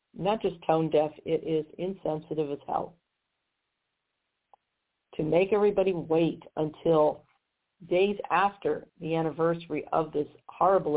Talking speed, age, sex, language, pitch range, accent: 110 wpm, 50-69, female, English, 155-205 Hz, American